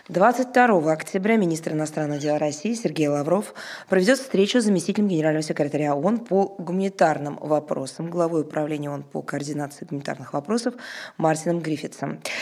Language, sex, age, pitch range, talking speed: Russian, female, 20-39, 150-195 Hz, 130 wpm